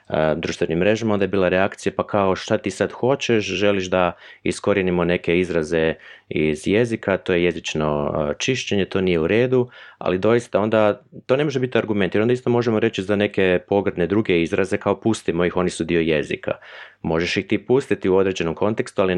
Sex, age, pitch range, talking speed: male, 30-49, 85-105 Hz, 185 wpm